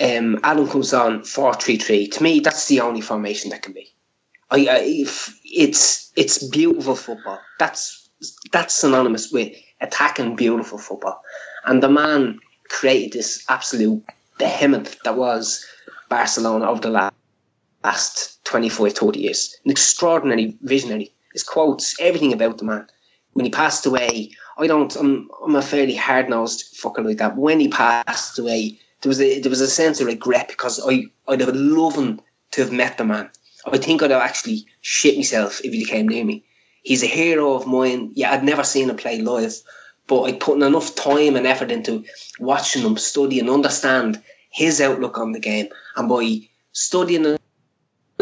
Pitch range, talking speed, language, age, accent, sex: 115-155 Hz, 170 wpm, English, 20-39, Irish, male